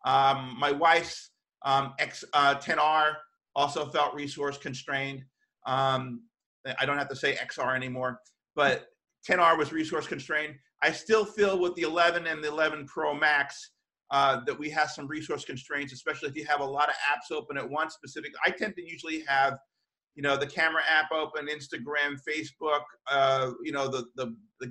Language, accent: English, American